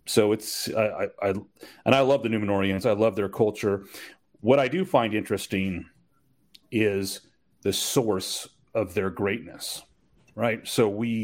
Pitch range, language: 95-115 Hz, English